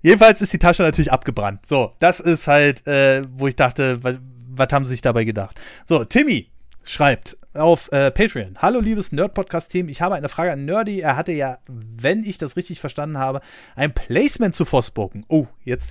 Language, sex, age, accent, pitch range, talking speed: German, male, 30-49, German, 130-185 Hz, 190 wpm